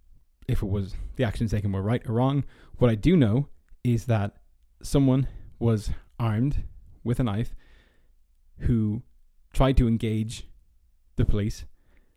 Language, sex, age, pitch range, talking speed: English, male, 20-39, 100-125 Hz, 140 wpm